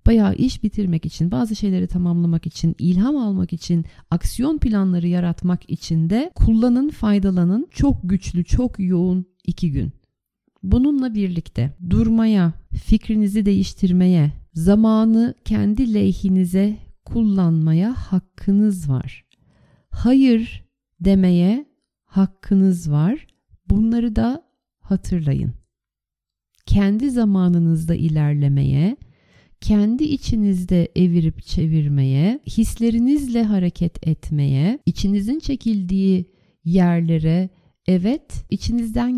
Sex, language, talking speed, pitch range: female, Turkish, 85 wpm, 170-225 Hz